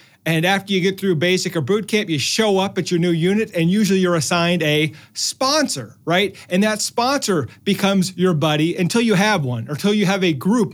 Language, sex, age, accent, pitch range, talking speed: English, male, 40-59, American, 155-210 Hz, 220 wpm